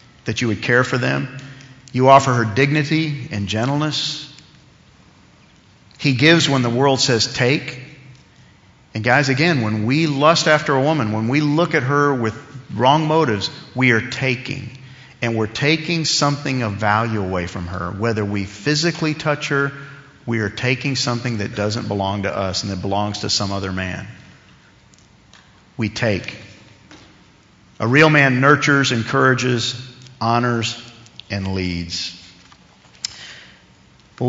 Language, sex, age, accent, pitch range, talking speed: English, male, 50-69, American, 110-140 Hz, 140 wpm